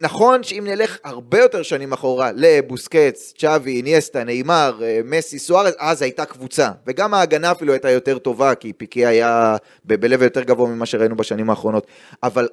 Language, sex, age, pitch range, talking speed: Hebrew, male, 20-39, 130-180 Hz, 165 wpm